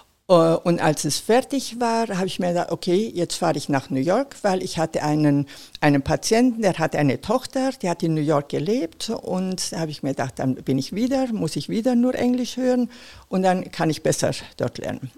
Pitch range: 145-195 Hz